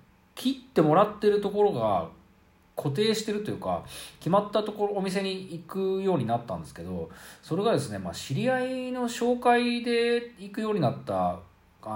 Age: 40-59